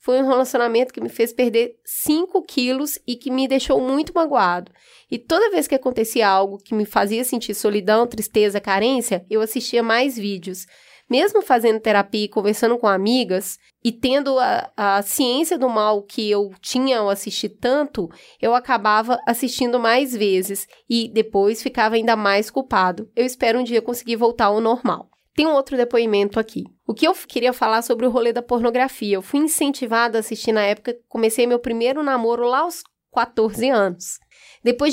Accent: Brazilian